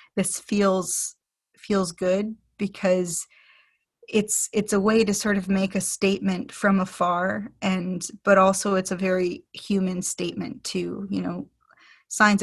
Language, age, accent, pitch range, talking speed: English, 30-49, American, 185-210 Hz, 140 wpm